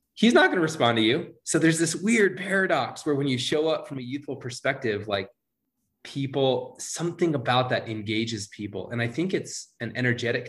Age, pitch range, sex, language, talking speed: 20-39, 105-135 Hz, male, English, 195 wpm